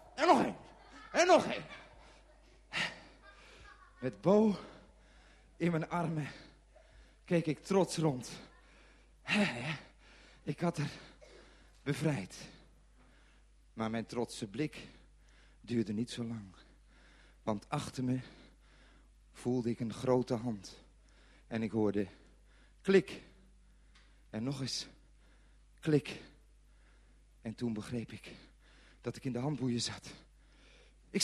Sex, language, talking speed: male, Dutch, 105 wpm